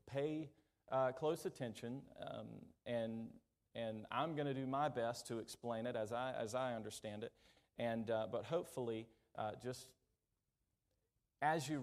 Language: English